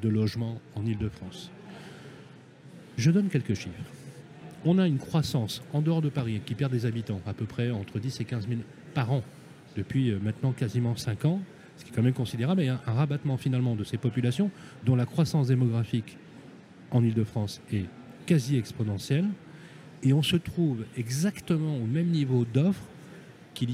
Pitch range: 115-155 Hz